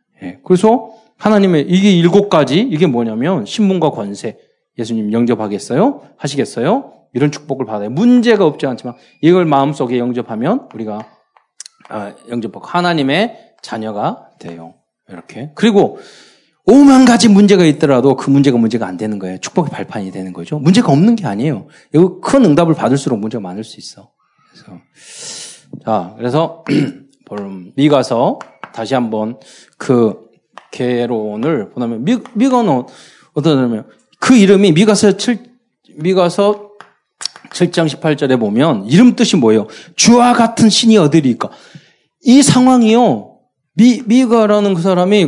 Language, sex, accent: Korean, male, native